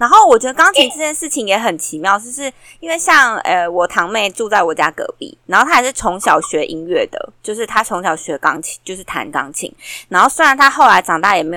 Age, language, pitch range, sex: 20-39, Chinese, 190-265 Hz, female